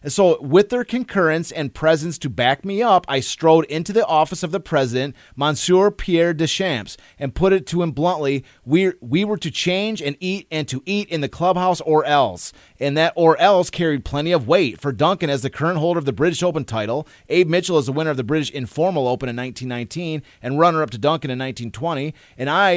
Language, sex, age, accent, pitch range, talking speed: English, male, 30-49, American, 135-180 Hz, 215 wpm